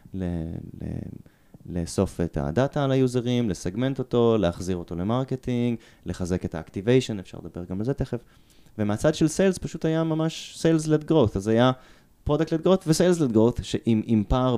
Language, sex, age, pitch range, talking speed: Hebrew, male, 20-39, 95-115 Hz, 155 wpm